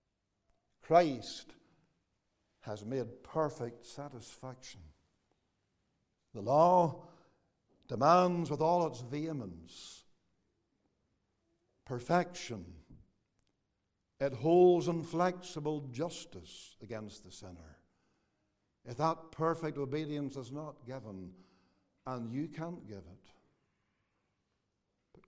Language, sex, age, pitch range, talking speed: English, male, 60-79, 105-170 Hz, 80 wpm